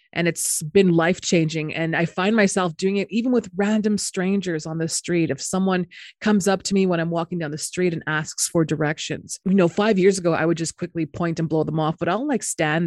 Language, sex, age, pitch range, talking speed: English, female, 30-49, 155-190 Hz, 245 wpm